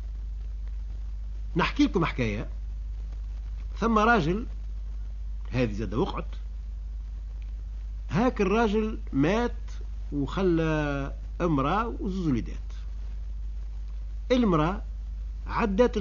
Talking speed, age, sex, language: 65 wpm, 50-69, male, Arabic